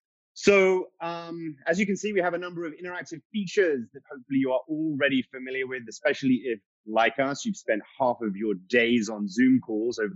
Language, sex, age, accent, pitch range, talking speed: English, male, 30-49, British, 125-180 Hz, 200 wpm